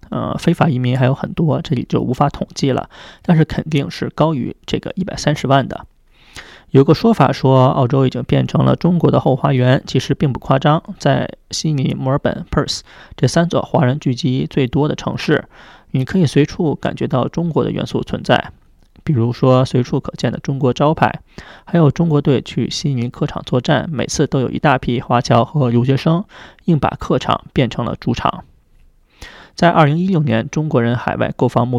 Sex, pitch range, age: male, 125-150 Hz, 20-39